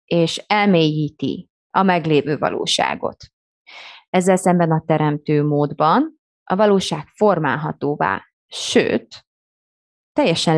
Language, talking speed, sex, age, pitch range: Hungarian, 85 wpm, female, 20-39, 155-200 Hz